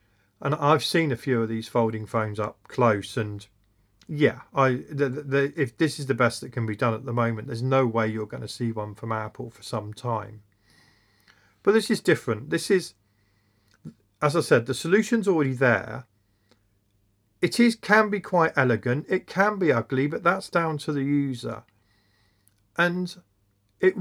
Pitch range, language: 105-150 Hz, English